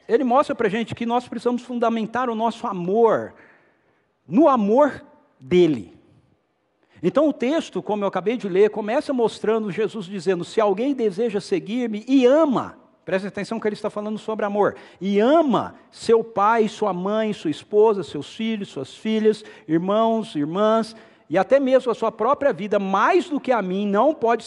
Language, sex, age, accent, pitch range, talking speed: Portuguese, male, 50-69, Brazilian, 185-245 Hz, 165 wpm